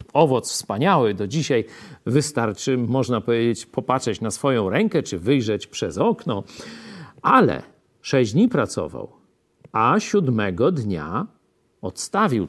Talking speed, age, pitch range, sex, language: 110 wpm, 50-69, 120-170 Hz, male, Polish